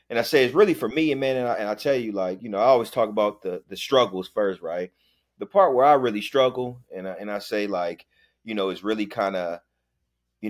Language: English